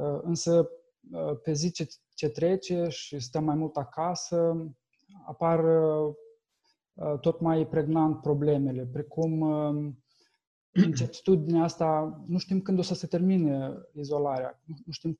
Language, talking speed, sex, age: Romanian, 115 wpm, male, 20-39